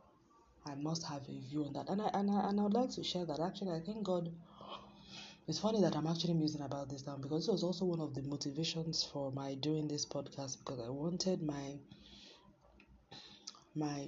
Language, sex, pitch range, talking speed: English, female, 140-170 Hz, 210 wpm